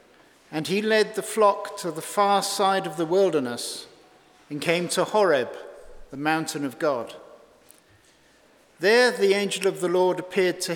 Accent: British